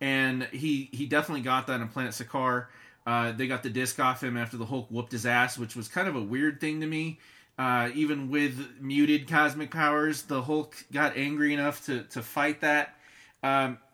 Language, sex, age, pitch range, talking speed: English, male, 30-49, 120-150 Hz, 200 wpm